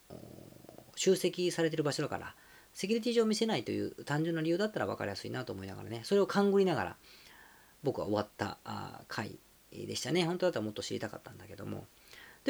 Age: 40-59